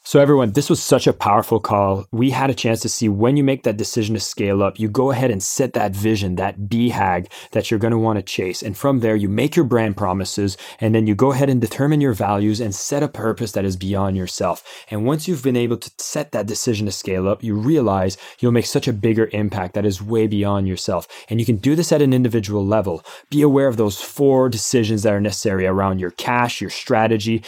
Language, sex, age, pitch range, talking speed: English, male, 20-39, 100-120 Hz, 240 wpm